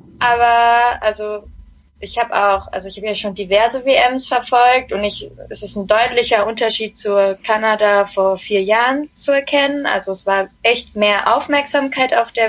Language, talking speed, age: German, 170 wpm, 20-39